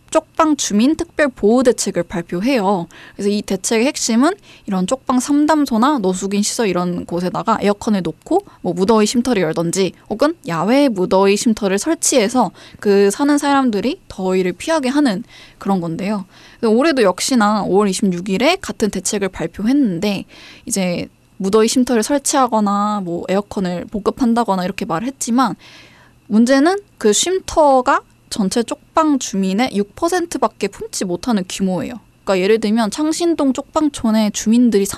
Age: 20-39